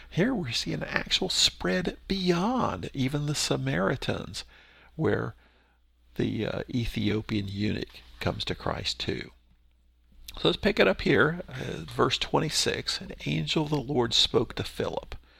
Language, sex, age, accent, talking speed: English, male, 50-69, American, 140 wpm